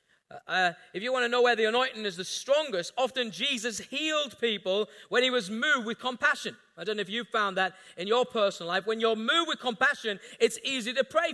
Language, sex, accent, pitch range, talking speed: English, male, British, 215-280 Hz, 220 wpm